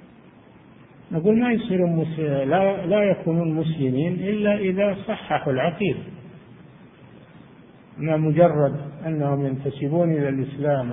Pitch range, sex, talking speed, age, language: 140-175 Hz, male, 100 wpm, 50-69, Arabic